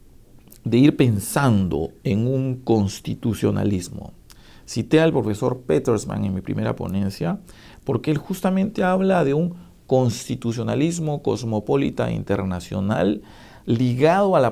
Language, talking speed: English, 105 wpm